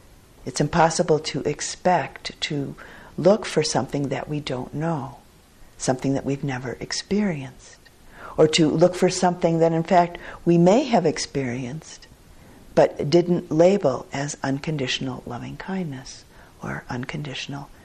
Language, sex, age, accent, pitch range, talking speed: English, female, 50-69, American, 135-180 Hz, 125 wpm